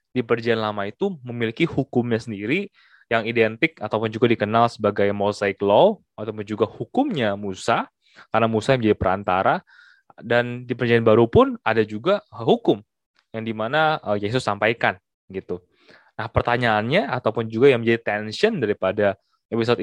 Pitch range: 110-160 Hz